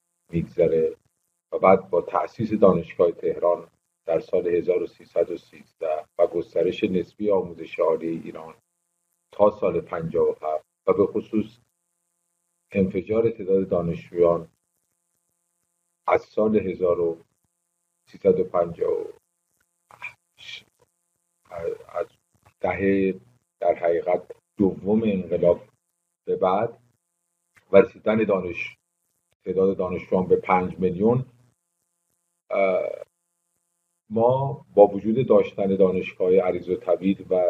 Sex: male